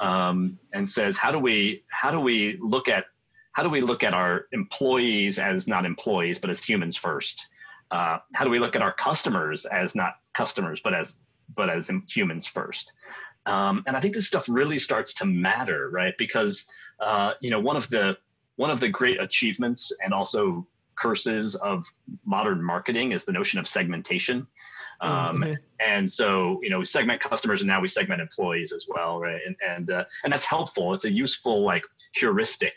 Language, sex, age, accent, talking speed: English, male, 30-49, American, 190 wpm